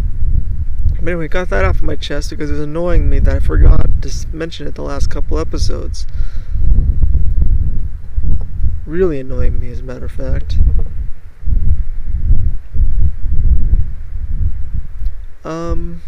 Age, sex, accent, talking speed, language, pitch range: 20-39, male, American, 115 wpm, English, 75-90 Hz